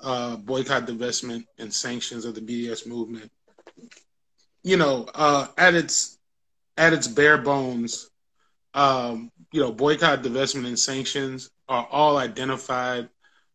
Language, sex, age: English, male, 20-39